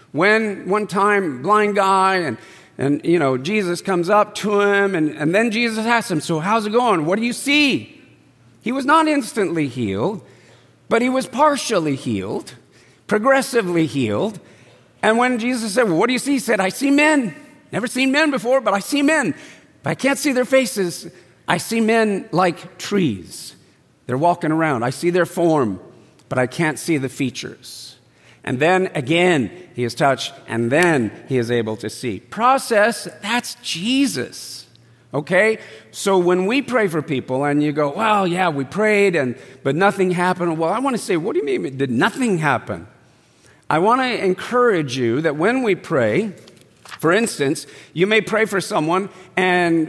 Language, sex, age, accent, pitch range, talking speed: English, male, 50-69, American, 150-230 Hz, 180 wpm